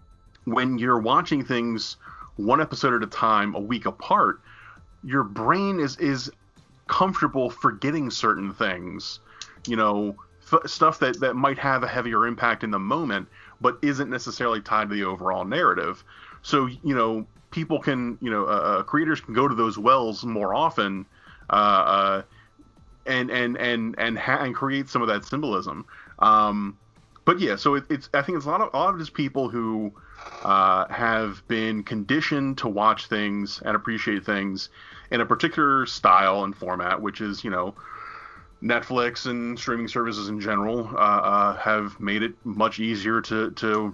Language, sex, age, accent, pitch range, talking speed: English, male, 30-49, American, 100-125 Hz, 170 wpm